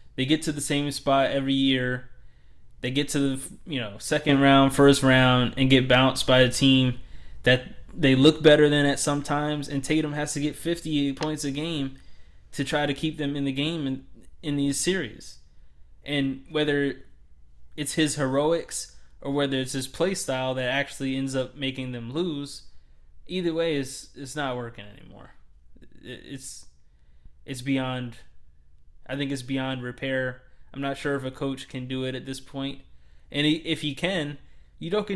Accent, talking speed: American, 175 wpm